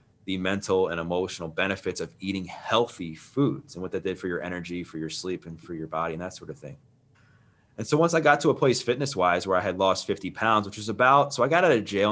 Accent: American